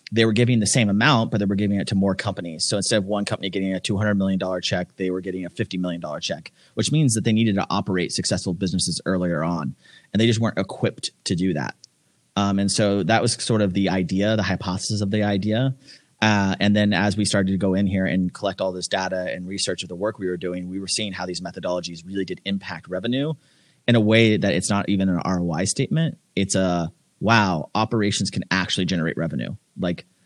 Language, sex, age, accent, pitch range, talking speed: English, male, 30-49, American, 95-105 Hz, 230 wpm